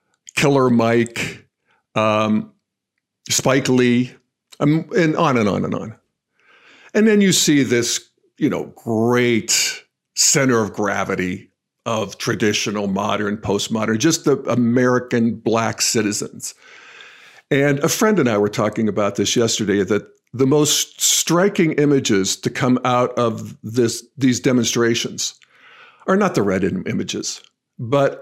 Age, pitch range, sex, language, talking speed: 50-69, 120-150 Hz, male, English, 130 wpm